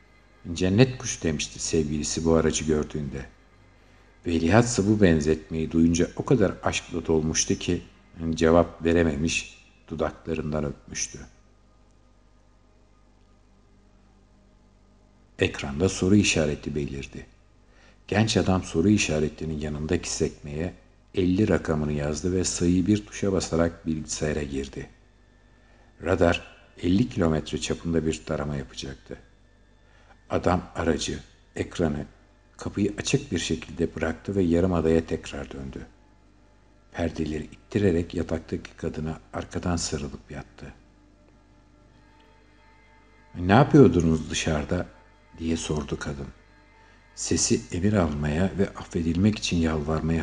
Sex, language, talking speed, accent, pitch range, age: male, Turkish, 95 wpm, native, 80-105 Hz, 60-79